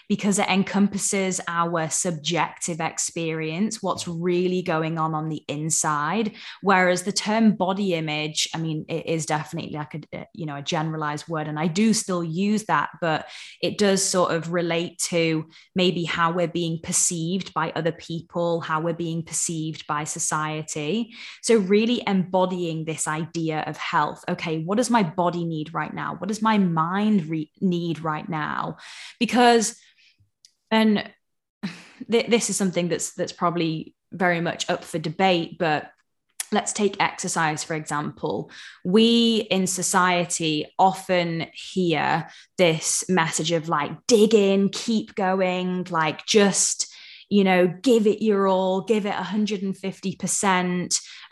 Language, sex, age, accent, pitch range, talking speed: English, female, 20-39, British, 165-205 Hz, 140 wpm